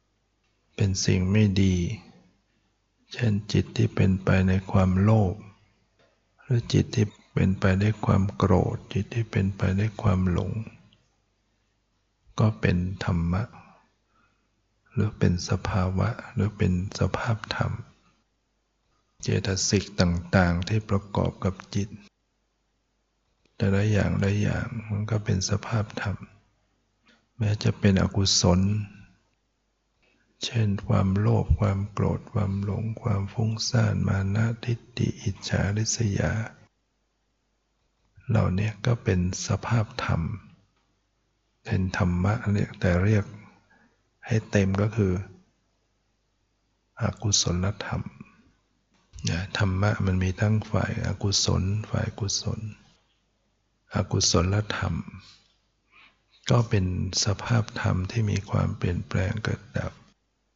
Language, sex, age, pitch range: English, male, 60-79, 95-110 Hz